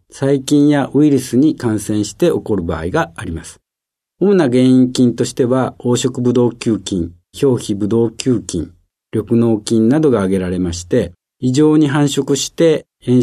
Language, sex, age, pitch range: Japanese, male, 50-69, 100-140 Hz